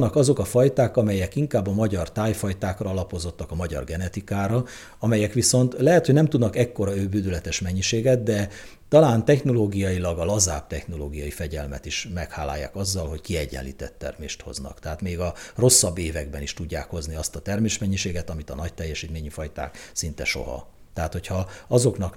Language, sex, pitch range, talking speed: Hungarian, male, 80-110 Hz, 150 wpm